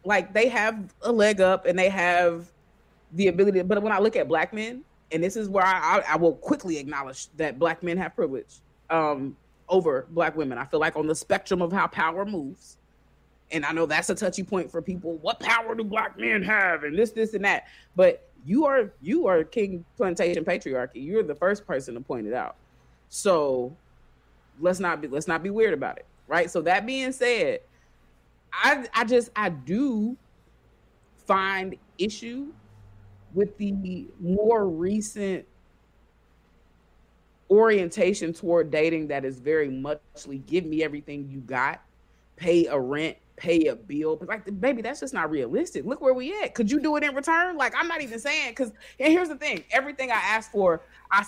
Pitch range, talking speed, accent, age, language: 155-220 Hz, 185 wpm, American, 30-49, English